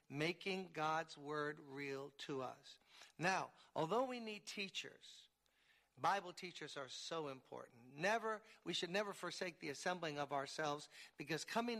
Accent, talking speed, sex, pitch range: American, 135 wpm, male, 155-205 Hz